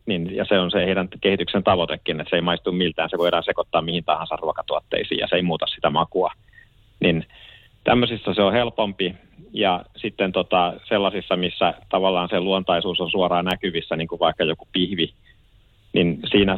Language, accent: Finnish, native